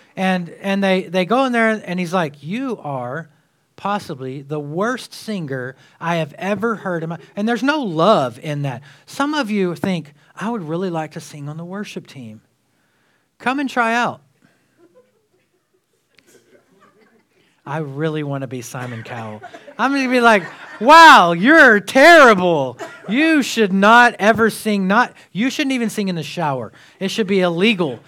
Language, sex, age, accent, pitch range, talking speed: English, male, 40-59, American, 165-230 Hz, 160 wpm